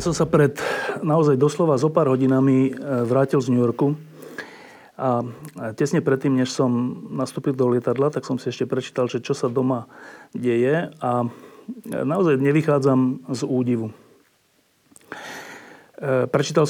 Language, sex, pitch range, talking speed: Slovak, male, 130-155 Hz, 135 wpm